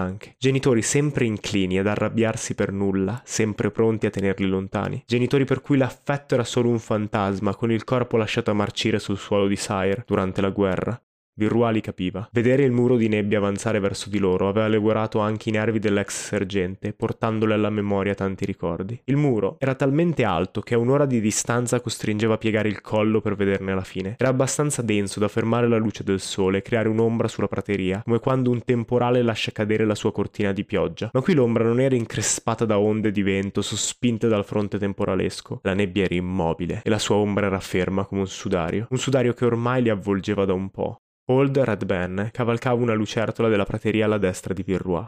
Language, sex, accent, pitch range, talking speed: Italian, male, native, 100-120 Hz, 195 wpm